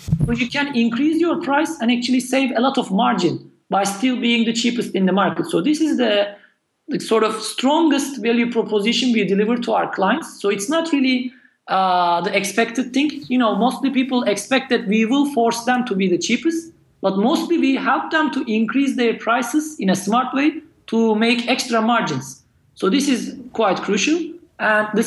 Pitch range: 210-280 Hz